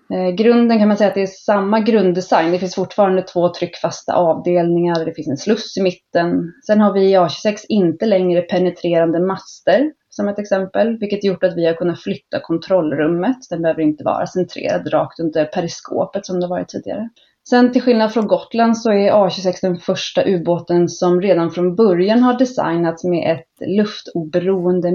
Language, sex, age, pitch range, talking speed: Swedish, female, 30-49, 175-215 Hz, 180 wpm